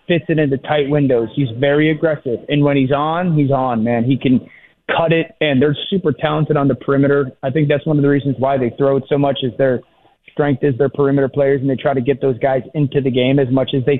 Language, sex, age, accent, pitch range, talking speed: English, male, 30-49, American, 135-155 Hz, 255 wpm